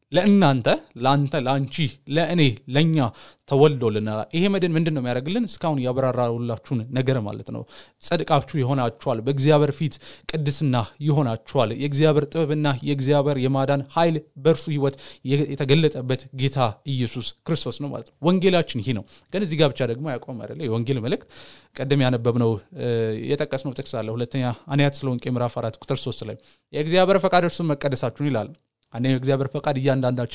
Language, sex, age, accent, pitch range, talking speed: English, male, 30-49, Indian, 125-150 Hz, 100 wpm